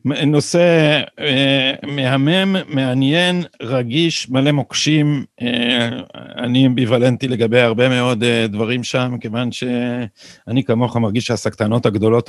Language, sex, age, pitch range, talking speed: Hebrew, male, 50-69, 120-160 Hz, 105 wpm